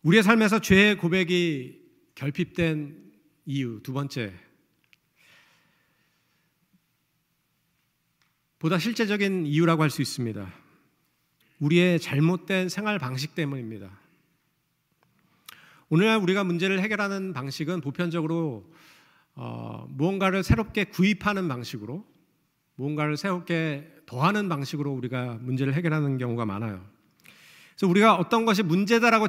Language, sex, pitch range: Korean, male, 140-190 Hz